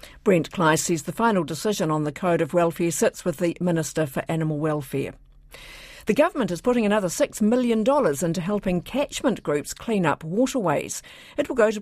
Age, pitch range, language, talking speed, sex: 50-69, 170-215 Hz, English, 185 wpm, female